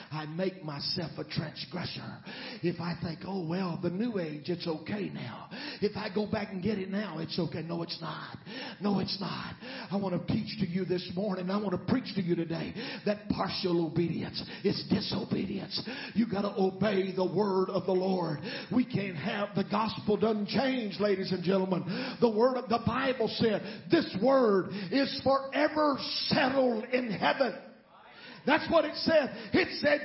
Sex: male